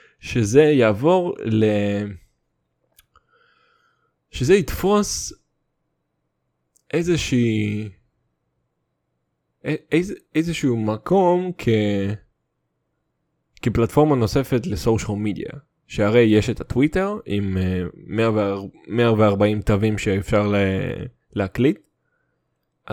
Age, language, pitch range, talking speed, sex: 20-39, English, 105-155 Hz, 60 wpm, male